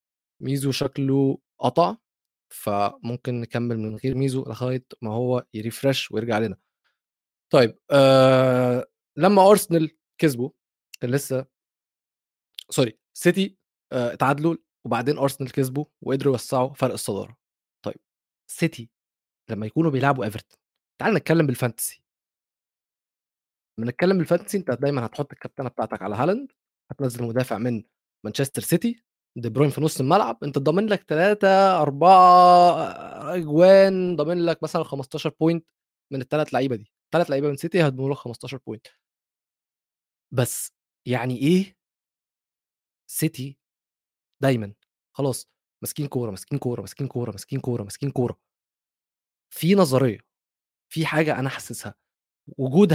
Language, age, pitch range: Arabic, 20-39, 120-160 Hz